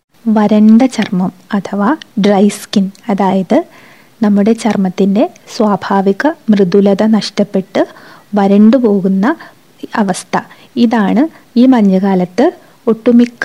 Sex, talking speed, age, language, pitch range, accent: female, 75 wpm, 20-39, Malayalam, 195-245 Hz, native